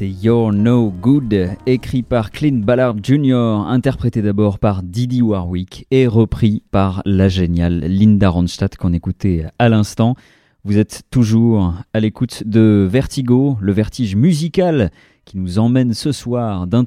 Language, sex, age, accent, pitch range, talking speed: French, male, 30-49, French, 95-130 Hz, 140 wpm